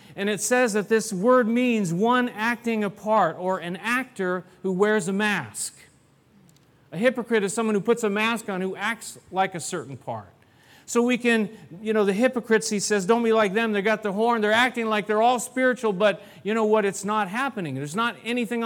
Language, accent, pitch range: English, American, 165-215 Hz